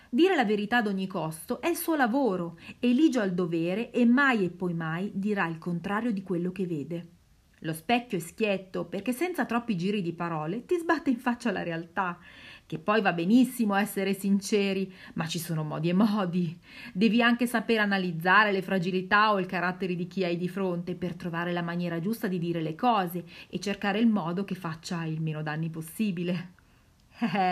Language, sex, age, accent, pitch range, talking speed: Italian, female, 30-49, native, 170-235 Hz, 190 wpm